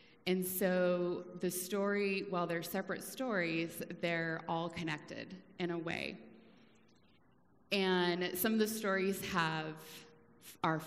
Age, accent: 30-49, American